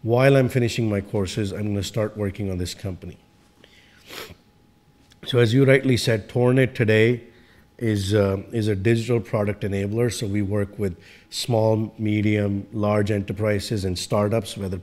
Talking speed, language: 155 wpm, English